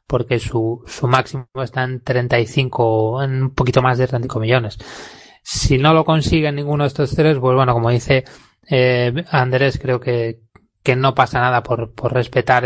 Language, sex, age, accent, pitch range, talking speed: Spanish, male, 20-39, Spanish, 120-130 Hz, 175 wpm